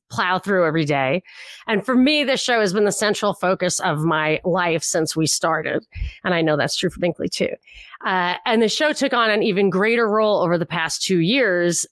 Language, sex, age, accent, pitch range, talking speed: English, female, 30-49, American, 170-225 Hz, 215 wpm